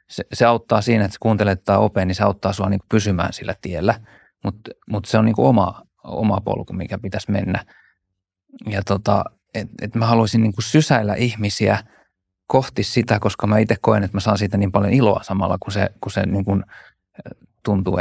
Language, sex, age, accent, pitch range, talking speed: Finnish, male, 20-39, native, 95-110 Hz, 185 wpm